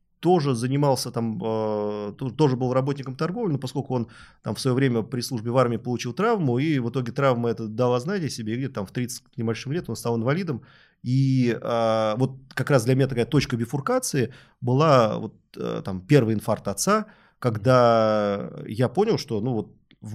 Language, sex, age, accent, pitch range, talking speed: Russian, male, 30-49, native, 115-145 Hz, 180 wpm